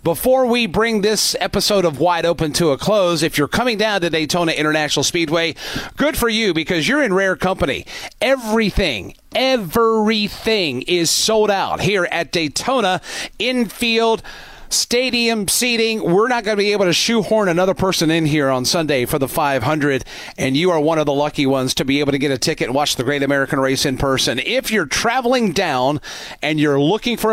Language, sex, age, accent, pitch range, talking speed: English, male, 40-59, American, 150-210 Hz, 190 wpm